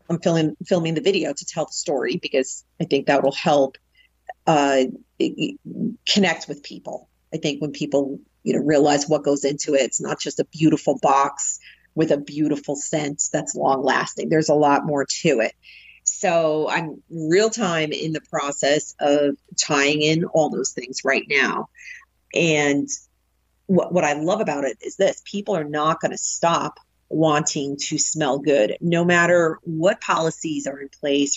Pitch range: 145-170 Hz